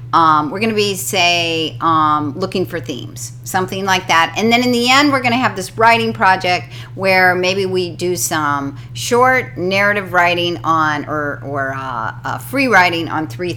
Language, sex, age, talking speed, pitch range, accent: English, female, 50-69, 175 wpm, 140-235 Hz, American